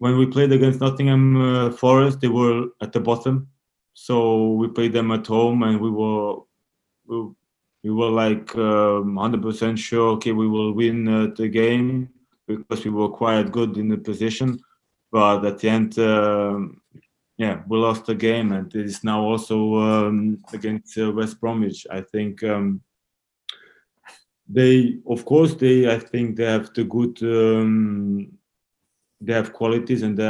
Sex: male